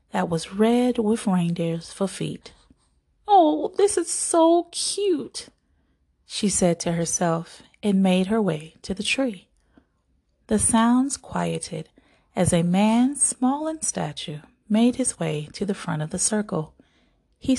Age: 30-49